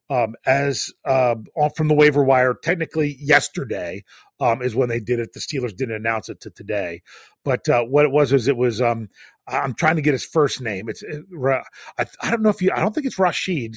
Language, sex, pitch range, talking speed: English, male, 120-160 Hz, 220 wpm